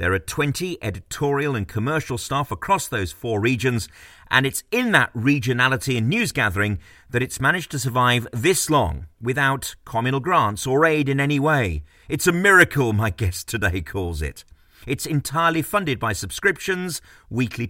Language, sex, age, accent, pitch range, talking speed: English, male, 40-59, British, 100-150 Hz, 165 wpm